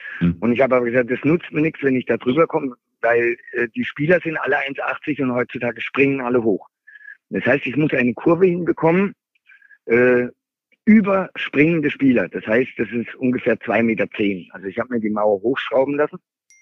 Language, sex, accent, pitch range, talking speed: German, male, German, 115-160 Hz, 185 wpm